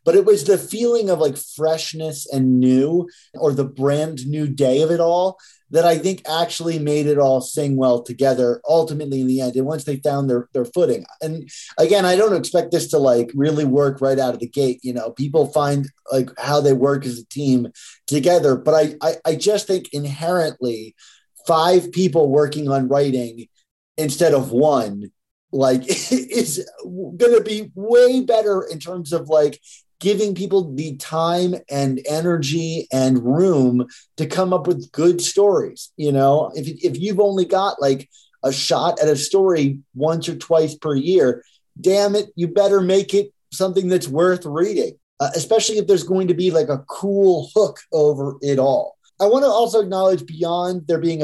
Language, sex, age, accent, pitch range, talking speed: English, male, 30-49, American, 135-180 Hz, 185 wpm